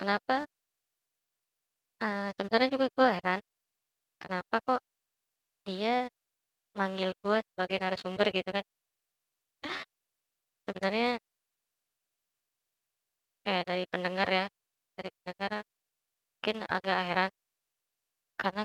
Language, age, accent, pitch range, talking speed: Indonesian, 20-39, American, 185-215 Hz, 85 wpm